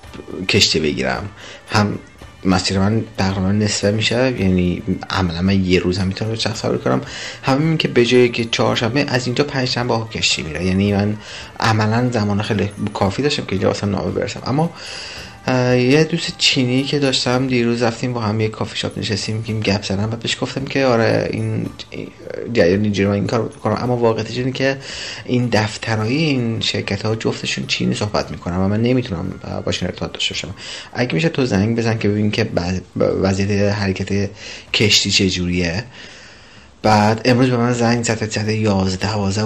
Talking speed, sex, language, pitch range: 160 wpm, male, Persian, 95-115 Hz